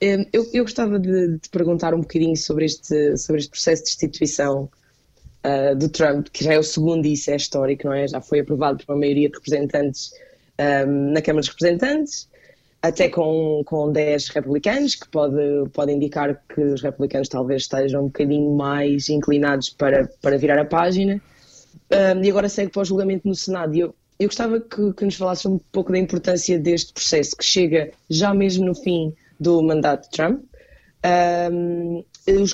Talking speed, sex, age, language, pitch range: 185 wpm, female, 20-39, Portuguese, 150-185 Hz